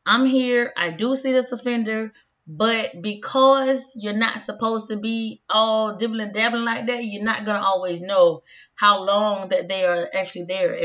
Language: English